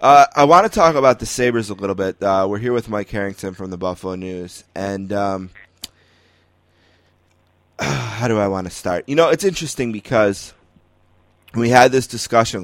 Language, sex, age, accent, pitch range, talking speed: English, male, 20-39, American, 90-120 Hz, 180 wpm